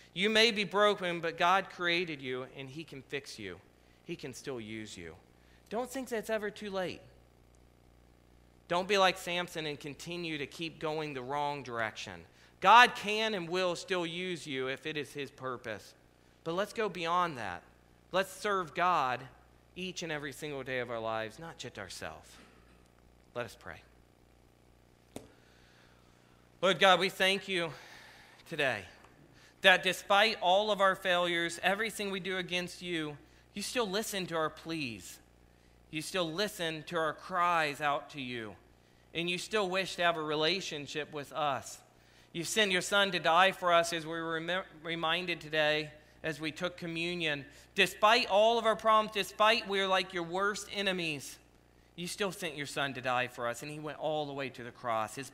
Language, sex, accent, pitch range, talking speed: English, male, American, 120-185 Hz, 175 wpm